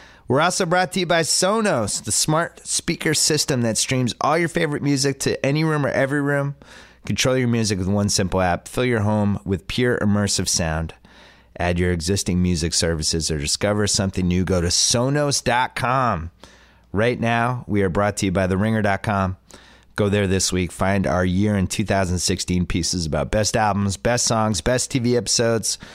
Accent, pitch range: American, 90-120 Hz